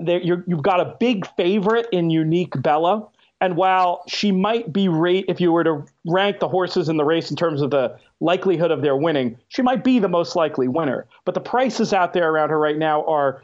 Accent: American